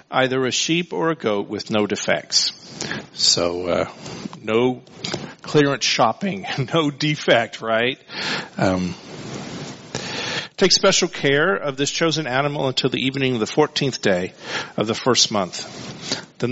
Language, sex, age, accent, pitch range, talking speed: English, male, 50-69, American, 115-140 Hz, 135 wpm